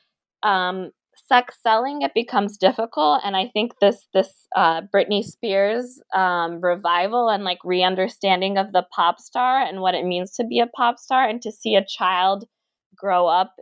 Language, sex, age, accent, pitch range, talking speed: English, female, 20-39, American, 175-220 Hz, 170 wpm